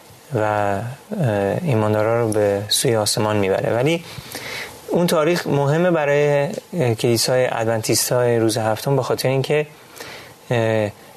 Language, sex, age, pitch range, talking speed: Persian, male, 30-49, 115-150 Hz, 105 wpm